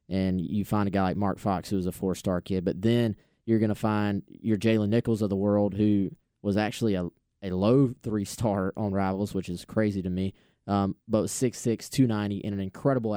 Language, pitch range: English, 95-110 Hz